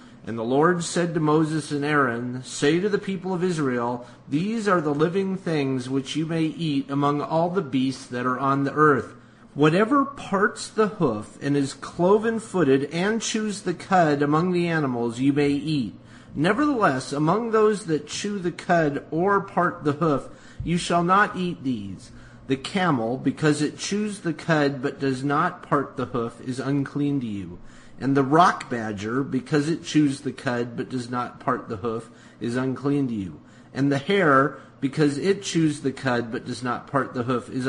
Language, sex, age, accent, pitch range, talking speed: English, male, 30-49, American, 130-175 Hz, 185 wpm